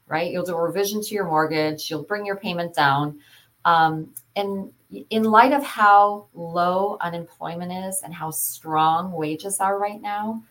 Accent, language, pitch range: American, English, 155-200 Hz